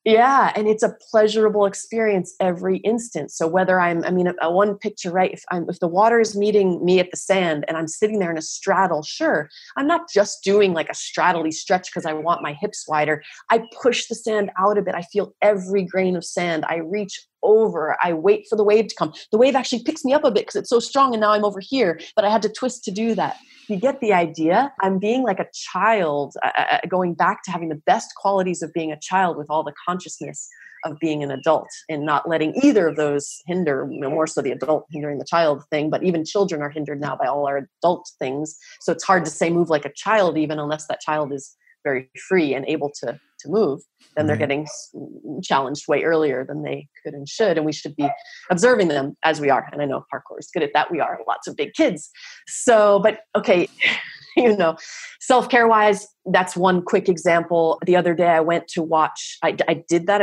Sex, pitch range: female, 155-215 Hz